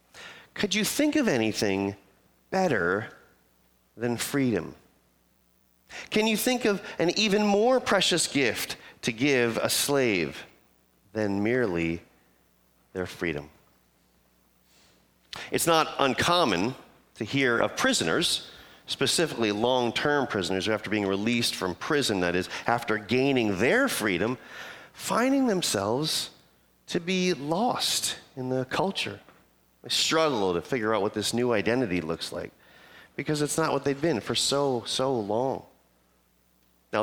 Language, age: English, 40-59